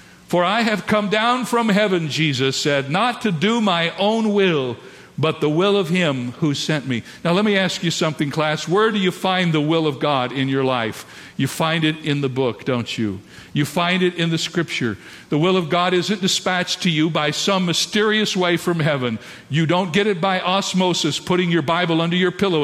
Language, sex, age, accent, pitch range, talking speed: English, male, 50-69, American, 140-185 Hz, 215 wpm